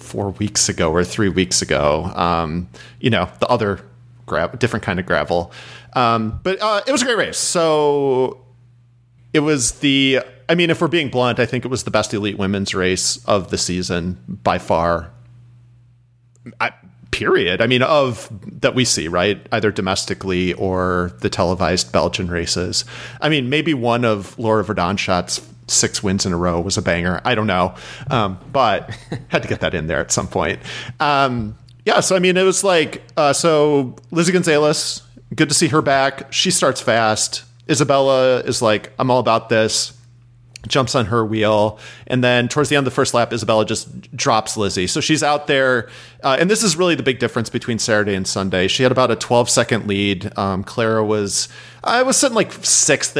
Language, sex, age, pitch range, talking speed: English, male, 40-59, 100-130 Hz, 190 wpm